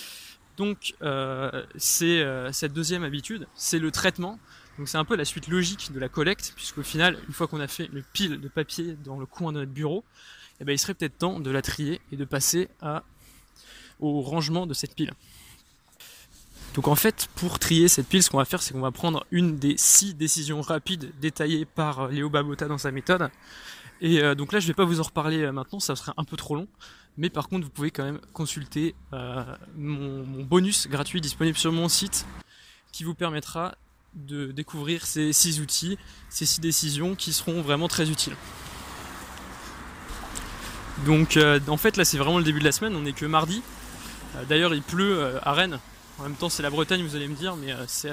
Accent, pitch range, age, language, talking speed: French, 145-170 Hz, 20-39, French, 205 wpm